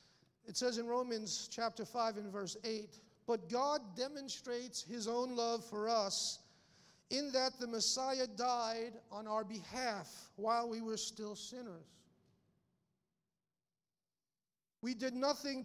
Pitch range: 210-265 Hz